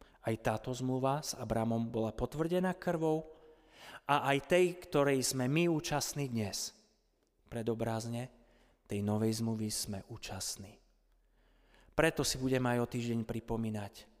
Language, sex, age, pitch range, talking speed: Slovak, male, 30-49, 115-150 Hz, 125 wpm